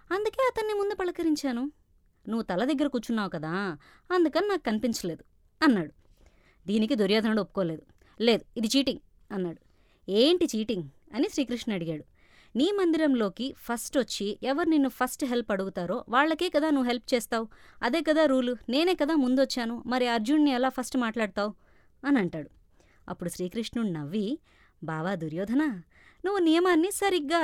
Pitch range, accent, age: 200-290 Hz, native, 20-39